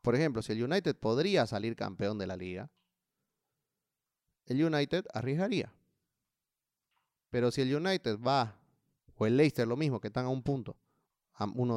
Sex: male